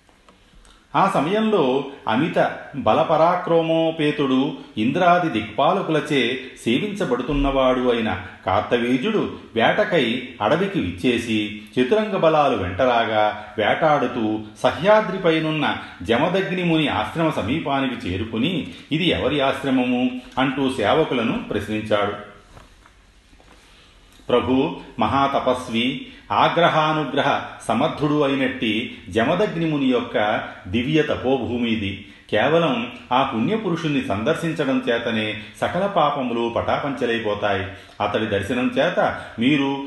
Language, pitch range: Telugu, 110-150 Hz